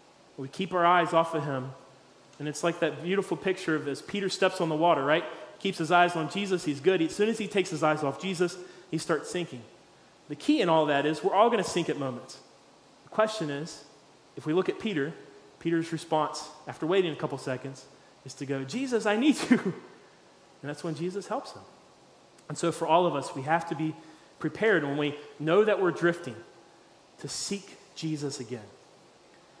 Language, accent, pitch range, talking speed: English, American, 140-175 Hz, 205 wpm